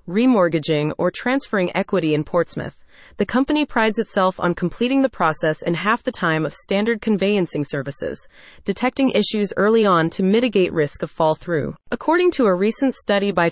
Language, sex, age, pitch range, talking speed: English, female, 30-49, 170-225 Hz, 165 wpm